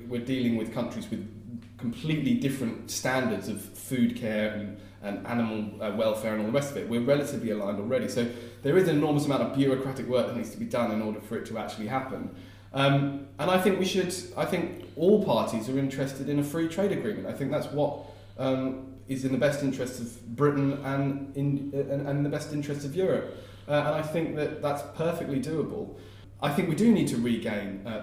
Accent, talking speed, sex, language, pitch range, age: British, 210 wpm, male, English, 110-145 Hz, 20-39